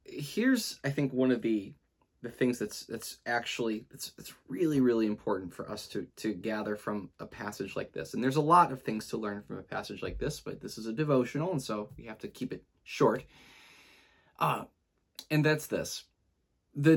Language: English